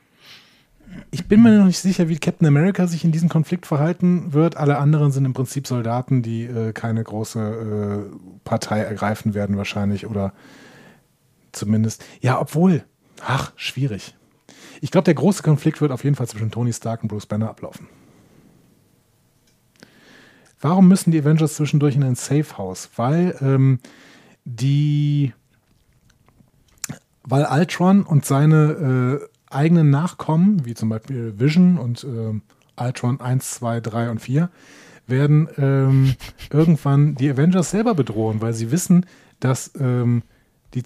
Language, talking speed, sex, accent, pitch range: German, 140 wpm, male, German, 115-155 Hz